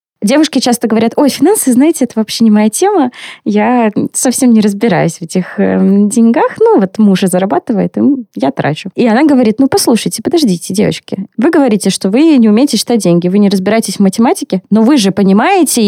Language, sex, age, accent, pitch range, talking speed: Russian, female, 20-39, native, 200-255 Hz, 195 wpm